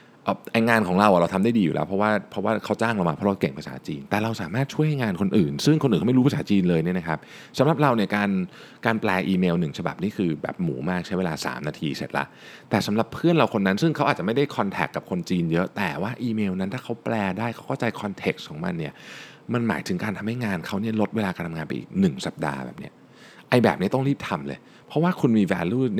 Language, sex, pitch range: Thai, male, 95-135 Hz